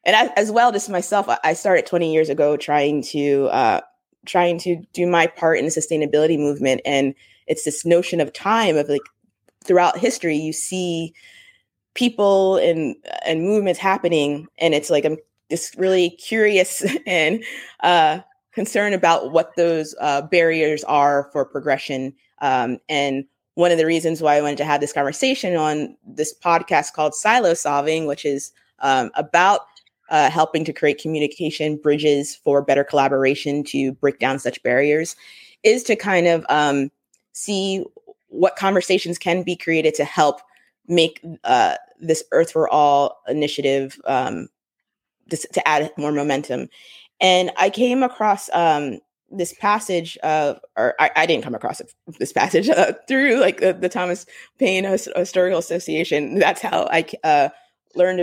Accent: American